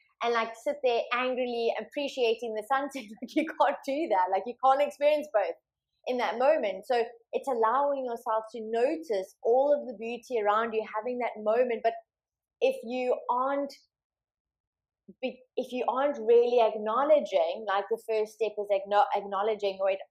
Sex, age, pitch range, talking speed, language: female, 20-39, 205-265 Hz, 155 wpm, English